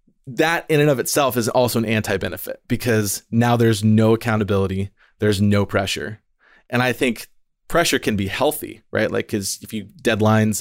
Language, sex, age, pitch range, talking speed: English, male, 20-39, 100-120 Hz, 170 wpm